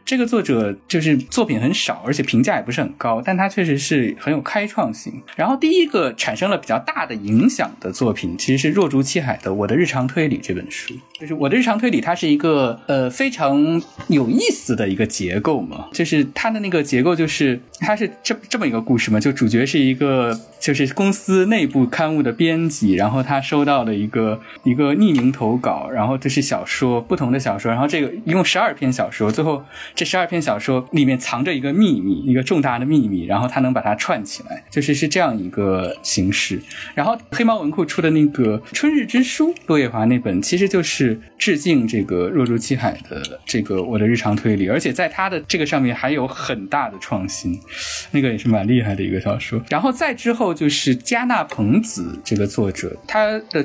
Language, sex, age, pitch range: Chinese, male, 10-29, 120-190 Hz